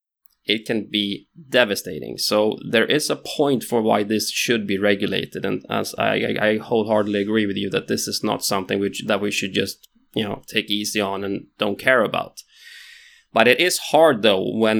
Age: 20-39